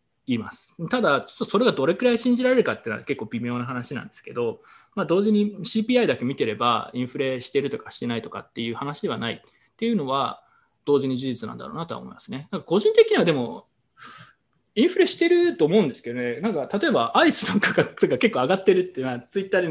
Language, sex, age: Japanese, male, 20-39